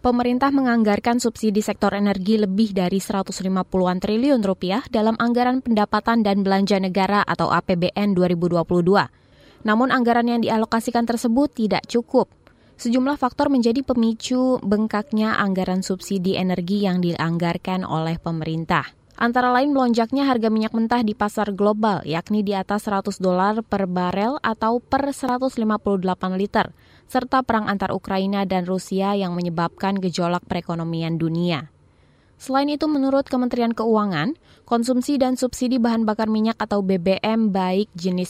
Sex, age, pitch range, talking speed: female, 20-39, 185-235 Hz, 130 wpm